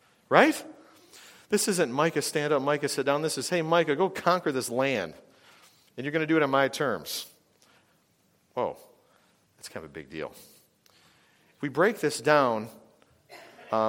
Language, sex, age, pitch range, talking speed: English, male, 40-59, 125-160 Hz, 170 wpm